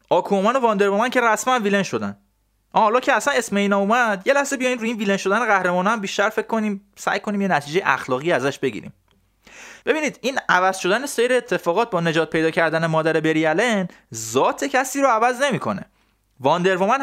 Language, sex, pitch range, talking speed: Persian, male, 140-210 Hz, 170 wpm